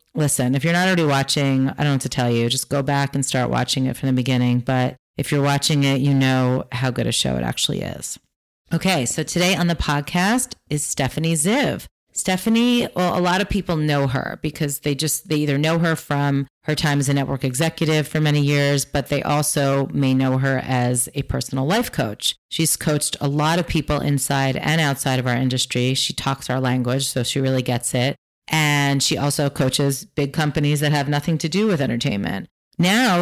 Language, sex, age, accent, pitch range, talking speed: English, female, 30-49, American, 135-160 Hz, 210 wpm